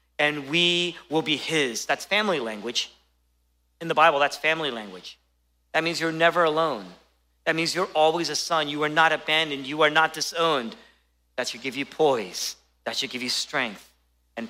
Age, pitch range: 40-59, 150-255 Hz